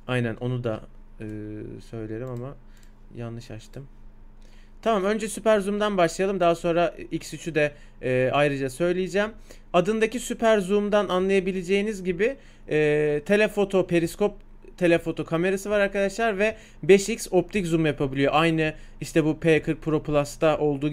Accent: native